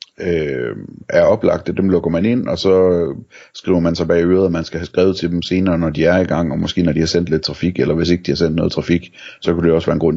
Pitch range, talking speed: 80-95 Hz, 295 wpm